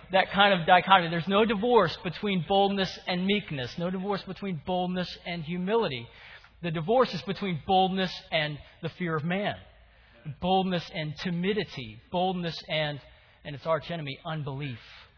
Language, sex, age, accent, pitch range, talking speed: English, male, 40-59, American, 120-165 Hz, 145 wpm